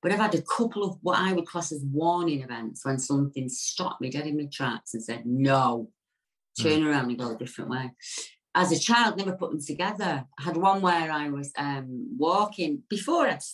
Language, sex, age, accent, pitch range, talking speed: English, female, 40-59, British, 140-220 Hz, 210 wpm